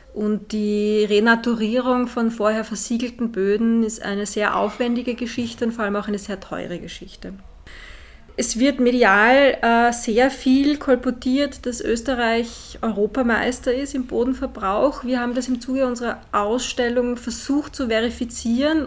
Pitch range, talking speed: 210-245 Hz, 135 wpm